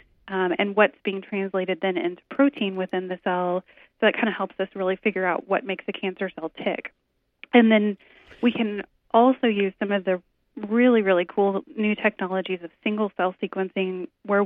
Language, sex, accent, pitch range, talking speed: English, female, American, 185-215 Hz, 185 wpm